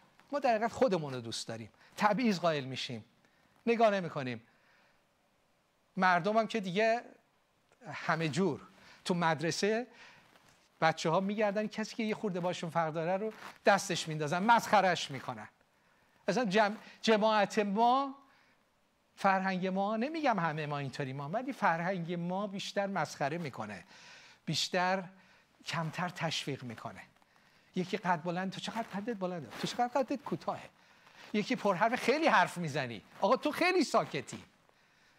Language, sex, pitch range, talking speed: Persian, male, 165-230 Hz, 130 wpm